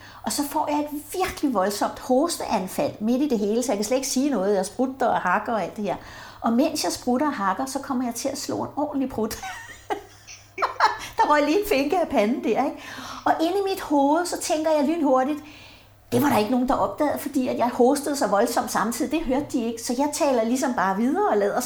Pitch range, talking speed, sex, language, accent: 245-310 Hz, 235 wpm, female, Danish, native